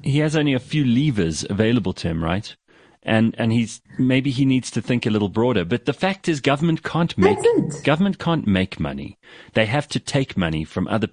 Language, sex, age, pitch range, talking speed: English, male, 30-49, 85-115 Hz, 220 wpm